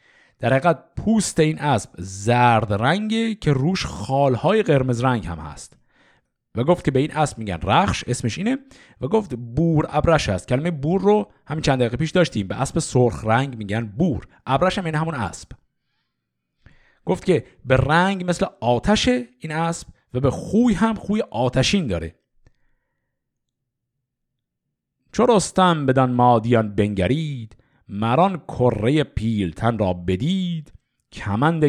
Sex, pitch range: male, 115-170 Hz